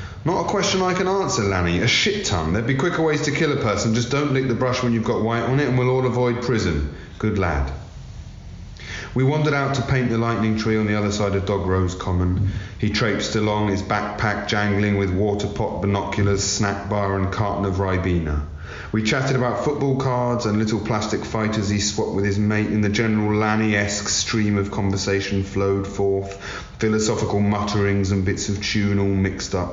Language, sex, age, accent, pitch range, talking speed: English, male, 30-49, British, 90-115 Hz, 200 wpm